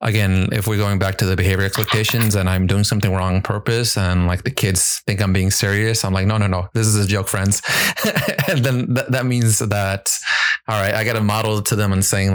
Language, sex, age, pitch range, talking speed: English, male, 30-49, 95-110 Hz, 245 wpm